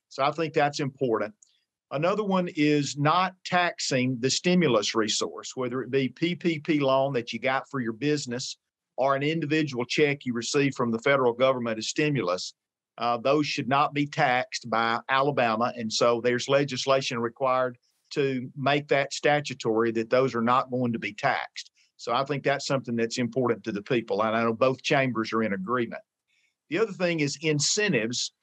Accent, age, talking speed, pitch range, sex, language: American, 50-69, 175 wpm, 120-150 Hz, male, English